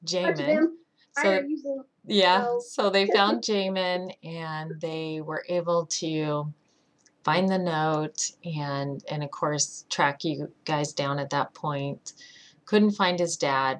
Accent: American